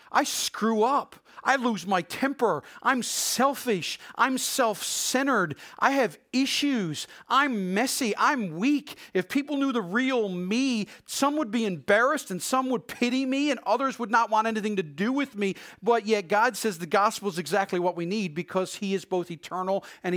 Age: 40-59